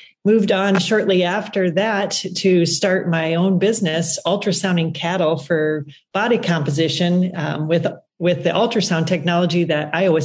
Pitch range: 160-190 Hz